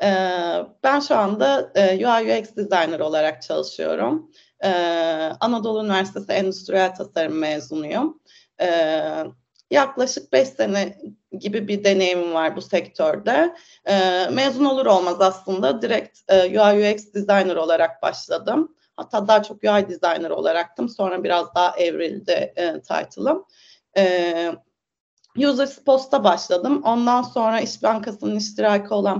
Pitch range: 185-270 Hz